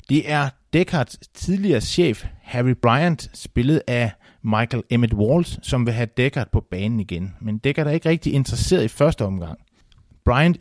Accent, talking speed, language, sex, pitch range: native, 165 wpm, Danish, male, 110-145 Hz